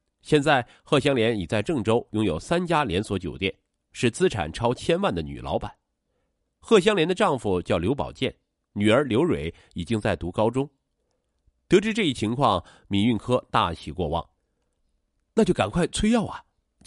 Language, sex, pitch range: Chinese, male, 85-140 Hz